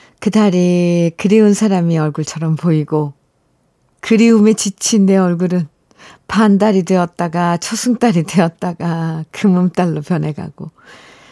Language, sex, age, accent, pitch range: Korean, female, 50-69, native, 160-220 Hz